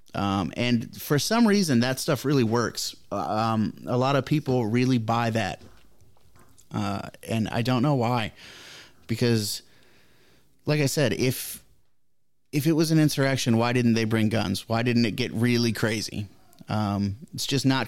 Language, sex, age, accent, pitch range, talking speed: English, male, 30-49, American, 105-130 Hz, 160 wpm